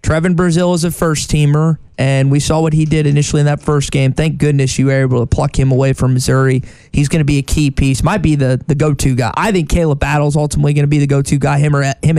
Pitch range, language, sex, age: 135-160 Hz, English, male, 20-39